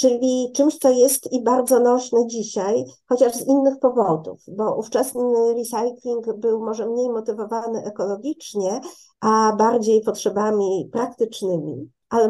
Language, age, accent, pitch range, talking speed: Polish, 50-69, native, 215-240 Hz, 120 wpm